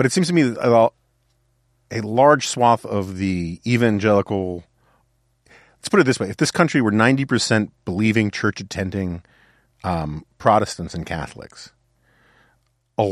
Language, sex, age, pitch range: English, male, 40-59, 90-120 Hz